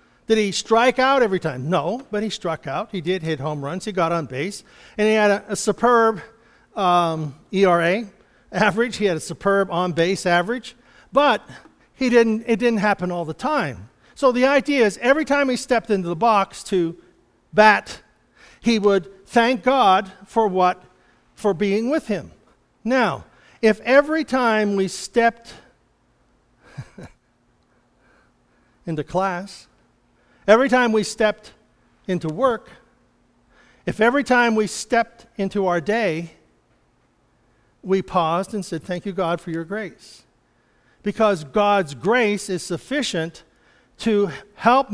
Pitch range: 180-235 Hz